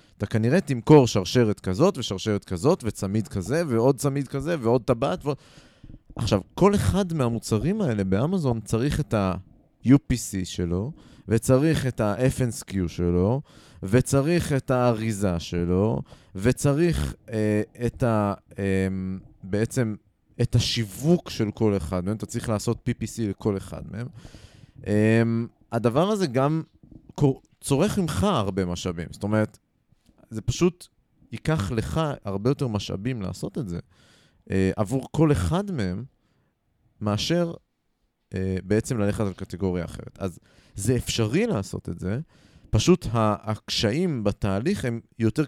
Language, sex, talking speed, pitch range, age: Hebrew, male, 120 wpm, 100-140 Hz, 30-49